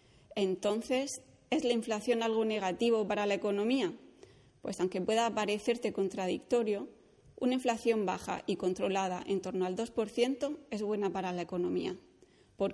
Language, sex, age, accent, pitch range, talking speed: Spanish, female, 20-39, Spanish, 190-235 Hz, 135 wpm